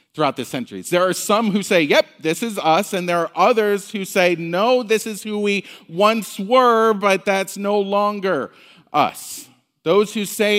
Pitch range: 150-210 Hz